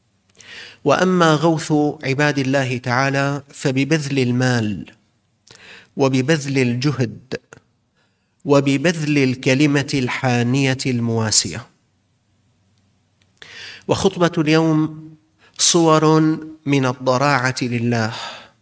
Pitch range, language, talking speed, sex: 120-150 Hz, Arabic, 60 wpm, male